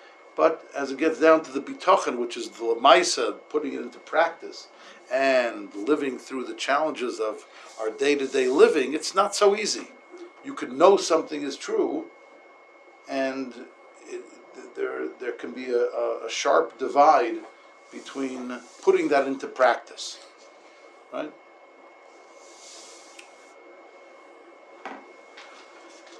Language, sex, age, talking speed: English, male, 60-79, 120 wpm